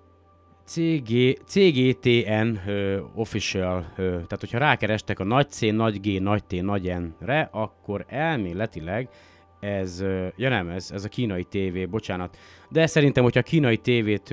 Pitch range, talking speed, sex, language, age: 95-125 Hz, 140 wpm, male, Hungarian, 30-49